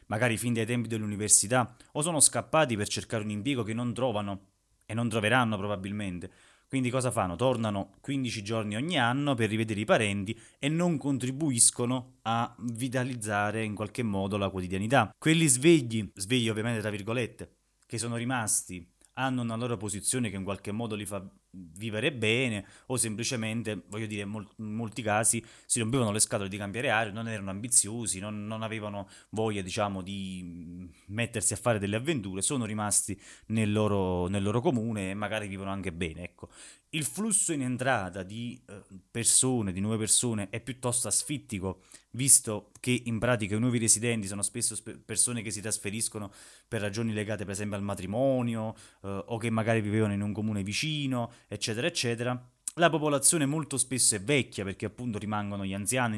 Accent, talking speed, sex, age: native, 170 wpm, male, 20-39